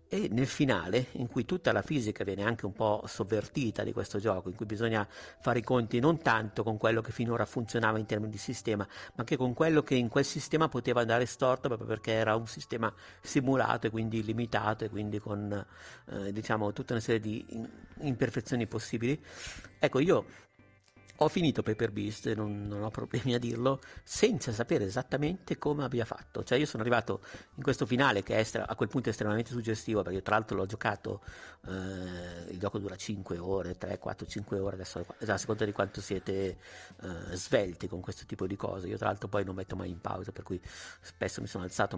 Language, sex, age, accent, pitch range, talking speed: Italian, male, 50-69, native, 100-120 Hz, 205 wpm